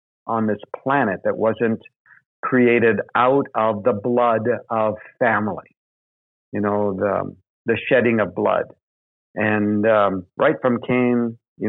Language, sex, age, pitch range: English, male, 50-69, 105-120 Hz